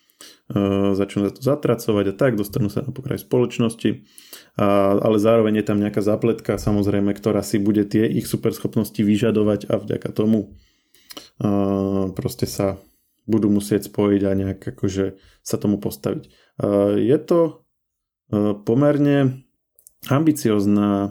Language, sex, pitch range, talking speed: Slovak, male, 105-120 Hz, 130 wpm